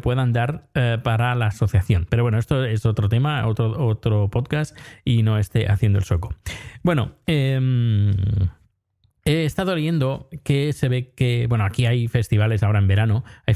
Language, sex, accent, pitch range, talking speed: Spanish, male, Spanish, 105-130 Hz, 170 wpm